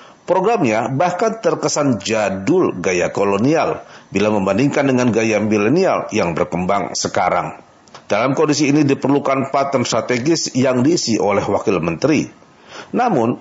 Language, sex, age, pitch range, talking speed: Indonesian, male, 50-69, 120-155 Hz, 115 wpm